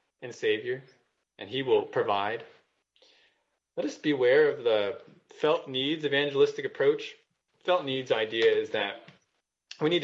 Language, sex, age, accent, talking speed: English, male, 20-39, American, 135 wpm